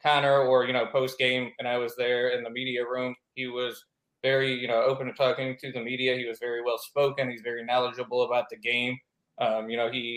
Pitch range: 115-130 Hz